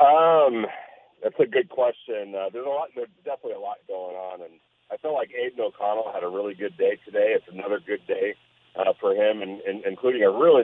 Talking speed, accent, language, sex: 220 wpm, American, English, male